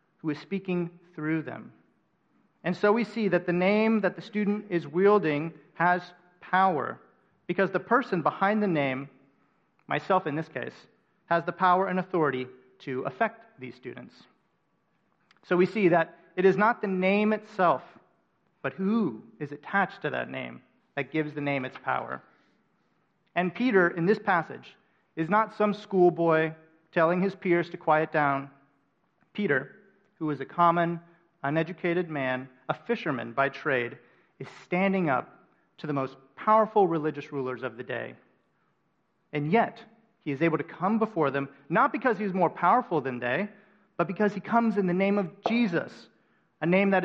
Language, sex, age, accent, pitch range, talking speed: English, male, 40-59, American, 145-195 Hz, 160 wpm